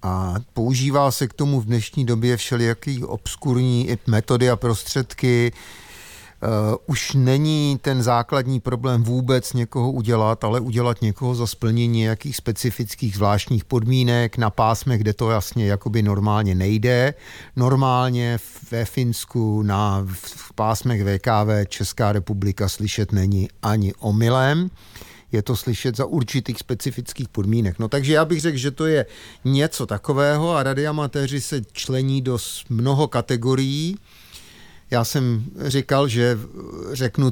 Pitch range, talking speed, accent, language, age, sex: 110-135 Hz, 130 wpm, native, Czech, 50-69, male